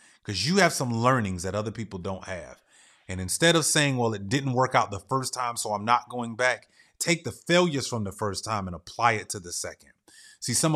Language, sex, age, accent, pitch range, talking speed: English, male, 30-49, American, 110-145 Hz, 235 wpm